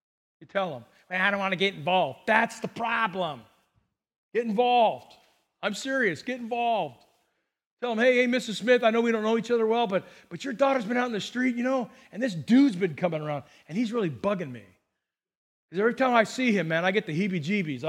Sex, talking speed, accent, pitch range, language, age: male, 220 wpm, American, 180-230 Hz, English, 40-59